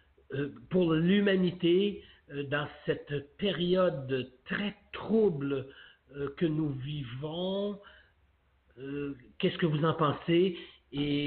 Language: English